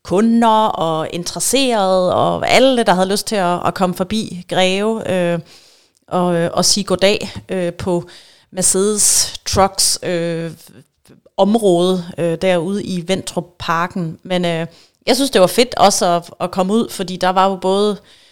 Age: 30-49